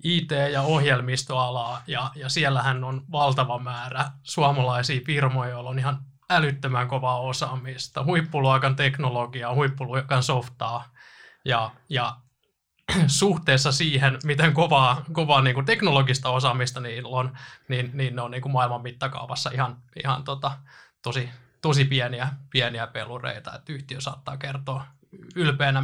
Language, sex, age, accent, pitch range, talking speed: Finnish, male, 20-39, native, 125-140 Hz, 130 wpm